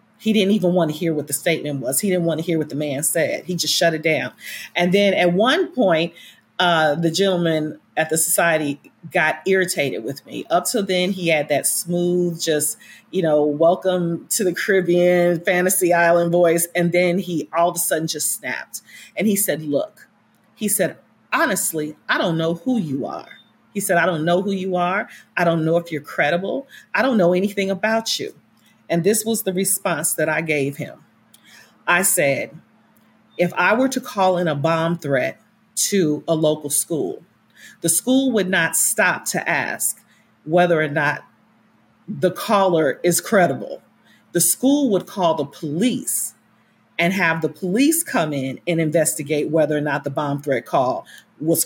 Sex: female